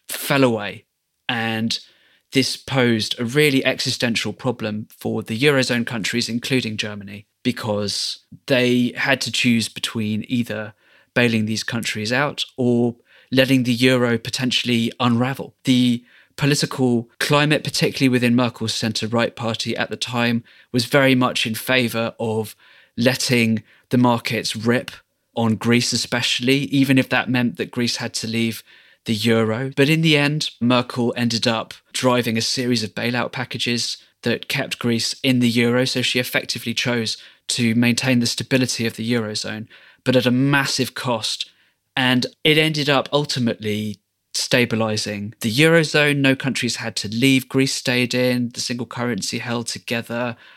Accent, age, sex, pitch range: British, 20-39, male, 115-130 Hz